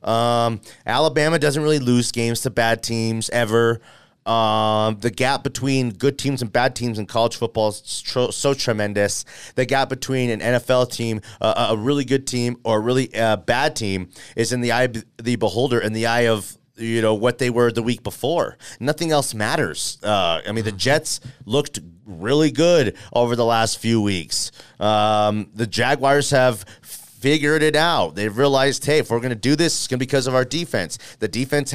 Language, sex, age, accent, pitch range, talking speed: English, male, 30-49, American, 115-145 Hz, 195 wpm